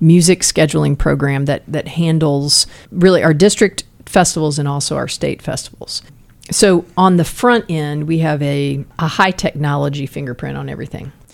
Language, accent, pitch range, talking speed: English, American, 145-185 Hz, 155 wpm